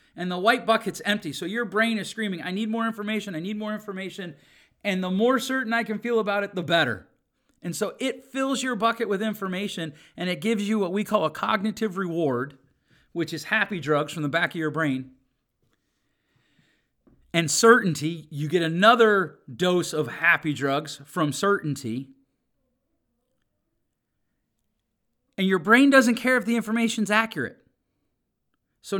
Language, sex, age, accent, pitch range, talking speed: English, male, 40-59, American, 155-225 Hz, 160 wpm